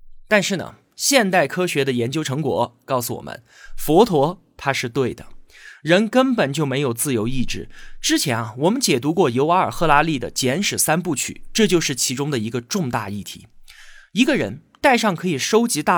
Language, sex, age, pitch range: Chinese, male, 20-39, 130-210 Hz